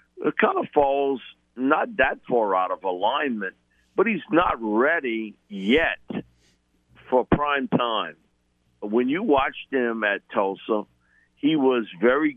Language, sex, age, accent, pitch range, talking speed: English, male, 50-69, American, 95-140 Hz, 130 wpm